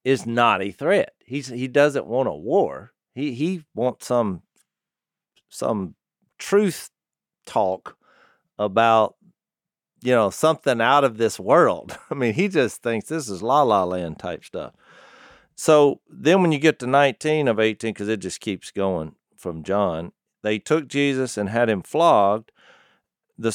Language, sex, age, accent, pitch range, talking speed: English, male, 50-69, American, 105-150 Hz, 155 wpm